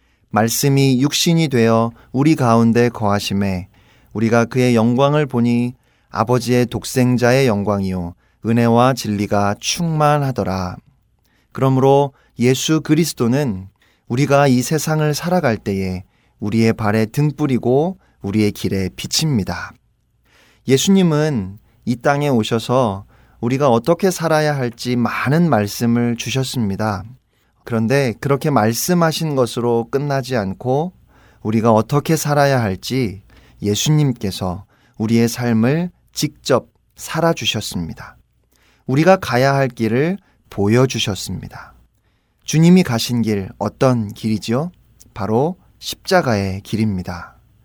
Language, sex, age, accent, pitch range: Korean, male, 30-49, native, 110-140 Hz